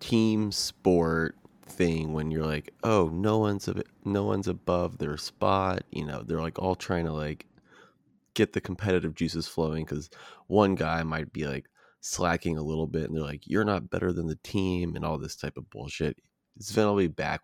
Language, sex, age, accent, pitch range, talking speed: English, male, 20-39, American, 80-90 Hz, 195 wpm